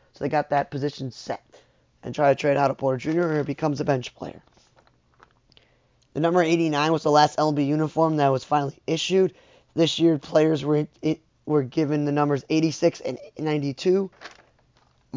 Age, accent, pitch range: 20-39, American, 145-165 Hz